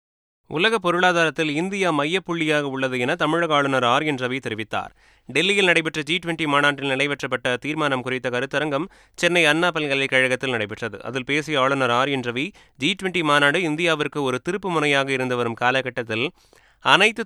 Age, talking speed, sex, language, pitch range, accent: 30-49, 130 wpm, male, Tamil, 130-160 Hz, native